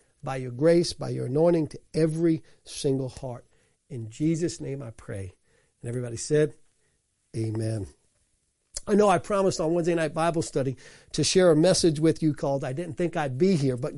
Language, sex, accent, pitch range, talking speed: English, male, American, 145-180 Hz, 180 wpm